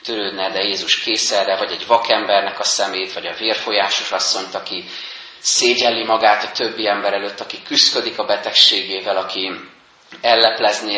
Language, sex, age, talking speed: Hungarian, male, 30-49, 140 wpm